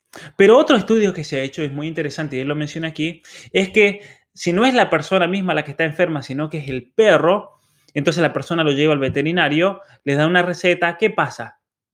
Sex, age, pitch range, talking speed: male, 20-39, 145-185 Hz, 225 wpm